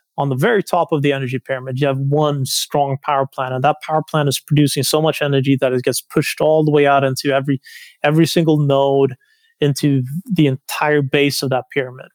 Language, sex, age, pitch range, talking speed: English, male, 30-49, 135-150 Hz, 210 wpm